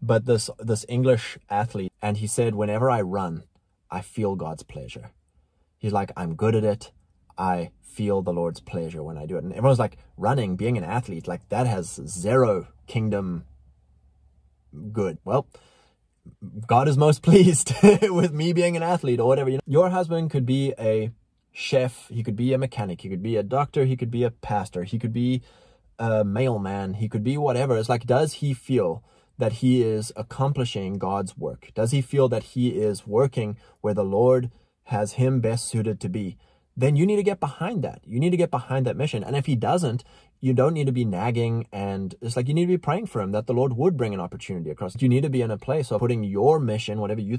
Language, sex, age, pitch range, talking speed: English, male, 20-39, 100-130 Hz, 210 wpm